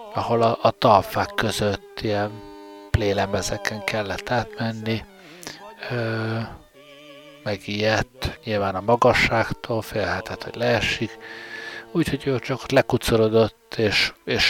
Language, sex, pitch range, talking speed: Hungarian, male, 100-115 Hz, 85 wpm